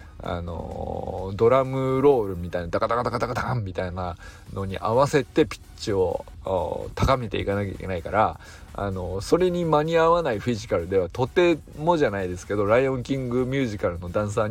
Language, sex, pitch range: Japanese, male, 95-140 Hz